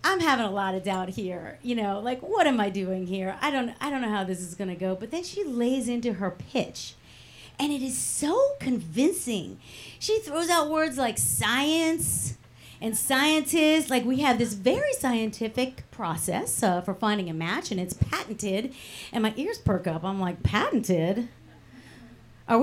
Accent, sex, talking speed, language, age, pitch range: American, female, 185 wpm, English, 40-59, 205-290 Hz